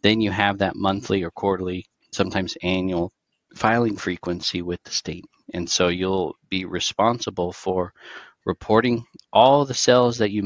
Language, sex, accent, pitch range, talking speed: English, male, American, 85-105 Hz, 150 wpm